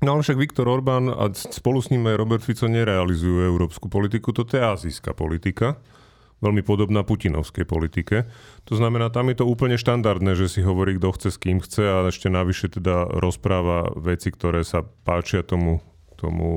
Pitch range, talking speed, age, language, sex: 95-115 Hz, 180 wpm, 30-49, Slovak, male